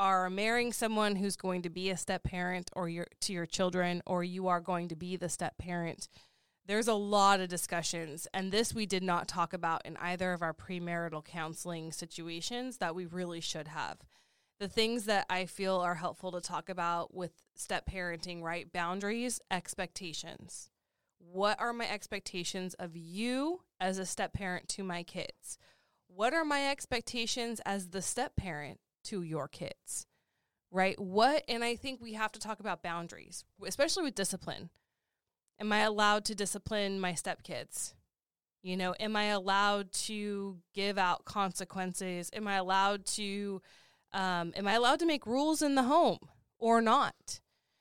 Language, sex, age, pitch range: English, female, 20-39, 175-215 Hz